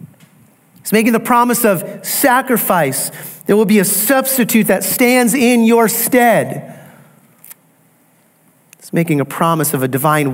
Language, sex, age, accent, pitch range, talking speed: English, male, 40-59, American, 165-215 Hz, 135 wpm